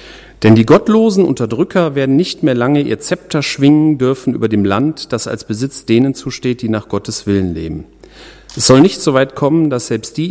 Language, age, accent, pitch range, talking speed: German, 40-59, German, 115-160 Hz, 200 wpm